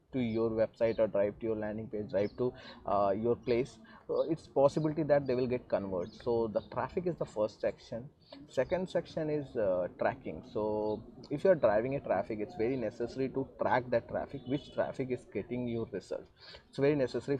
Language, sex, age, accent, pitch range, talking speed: Malayalam, male, 20-39, native, 115-140 Hz, 200 wpm